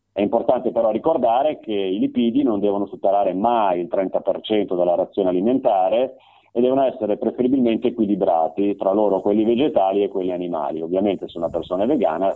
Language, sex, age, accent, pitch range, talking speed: Italian, male, 30-49, native, 90-120 Hz, 165 wpm